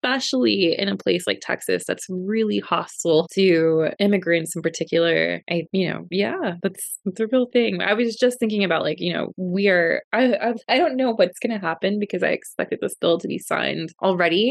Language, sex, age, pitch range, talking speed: English, female, 20-39, 165-205 Hz, 205 wpm